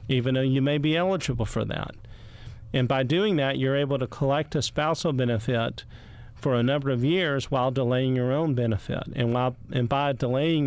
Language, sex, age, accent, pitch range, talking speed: English, male, 50-69, American, 120-145 Hz, 190 wpm